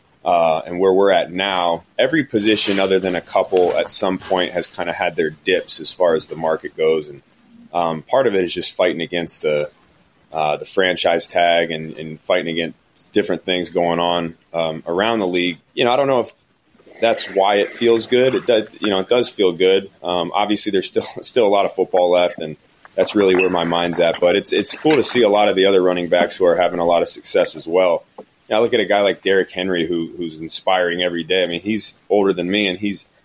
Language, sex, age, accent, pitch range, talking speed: English, male, 30-49, American, 85-105 Hz, 240 wpm